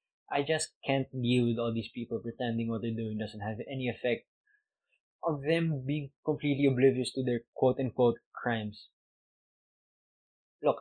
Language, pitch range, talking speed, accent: English, 115-145 Hz, 145 wpm, Filipino